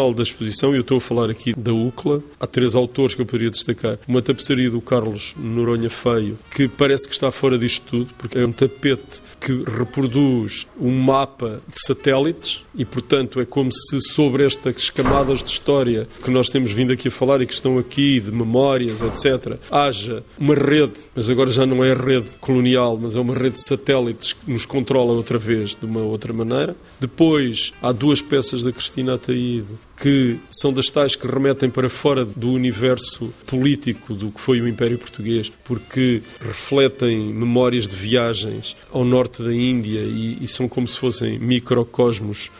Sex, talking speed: male, 185 wpm